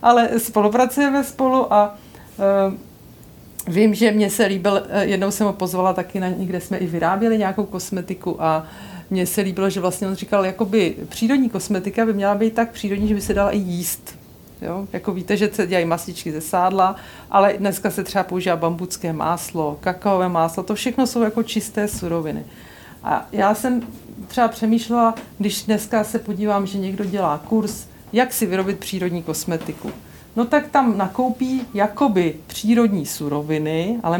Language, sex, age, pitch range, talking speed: Czech, female, 40-59, 185-230 Hz, 170 wpm